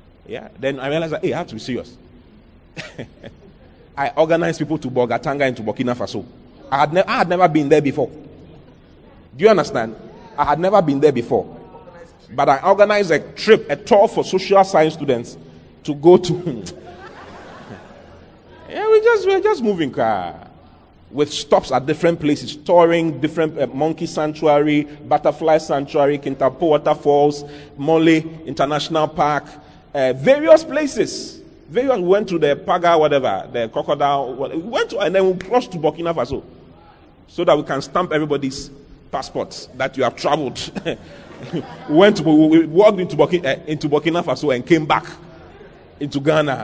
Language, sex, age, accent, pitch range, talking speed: English, male, 30-49, Nigerian, 120-180 Hz, 160 wpm